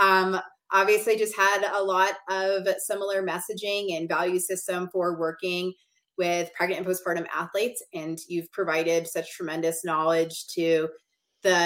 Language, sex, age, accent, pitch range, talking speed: English, female, 20-39, American, 165-195 Hz, 140 wpm